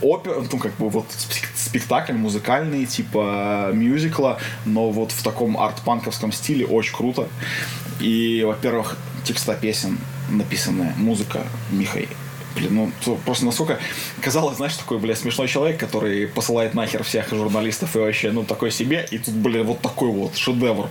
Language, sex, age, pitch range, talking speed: Russian, male, 20-39, 110-135 Hz, 145 wpm